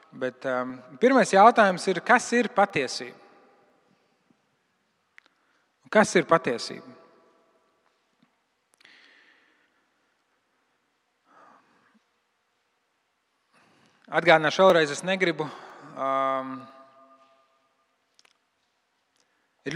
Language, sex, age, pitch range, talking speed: English, male, 40-59, 135-210 Hz, 50 wpm